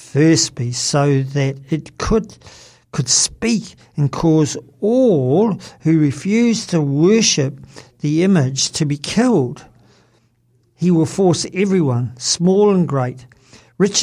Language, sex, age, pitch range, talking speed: English, male, 50-69, 130-165 Hz, 115 wpm